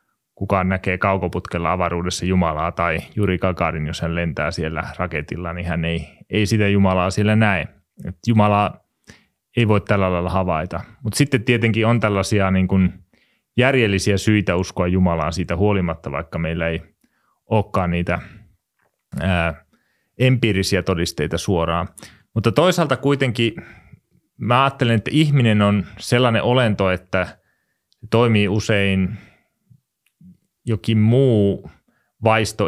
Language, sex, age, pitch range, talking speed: Finnish, male, 30-49, 85-105 Hz, 120 wpm